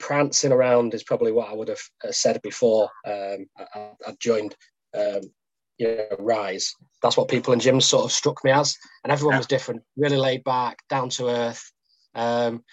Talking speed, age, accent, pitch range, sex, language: 185 wpm, 20-39, British, 120-140 Hz, male, English